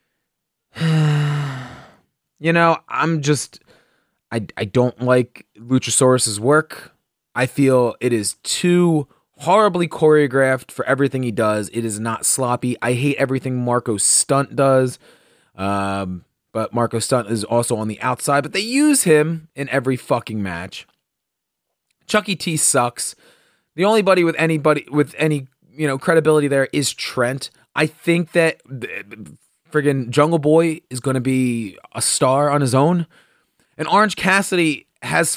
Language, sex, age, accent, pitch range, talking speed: English, male, 30-49, American, 125-160 Hz, 145 wpm